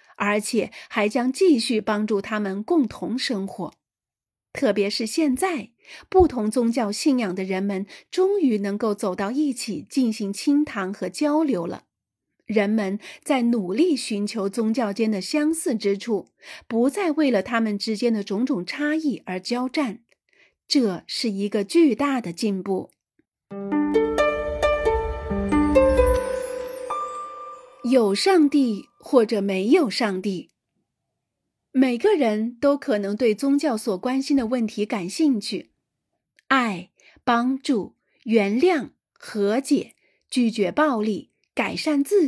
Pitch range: 205-285 Hz